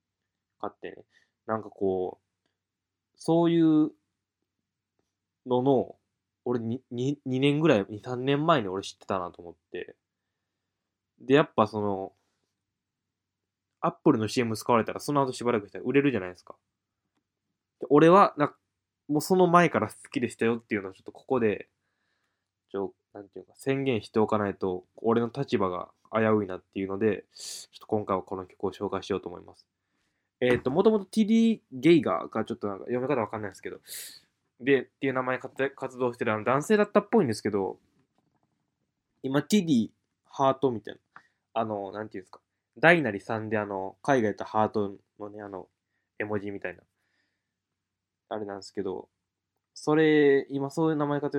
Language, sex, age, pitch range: Japanese, male, 20-39, 100-140 Hz